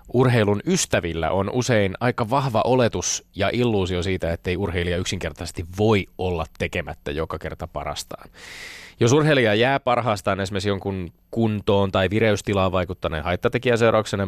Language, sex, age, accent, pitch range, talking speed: Finnish, male, 20-39, native, 90-110 Hz, 130 wpm